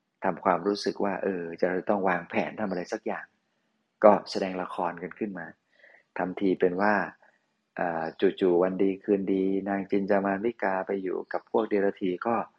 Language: Thai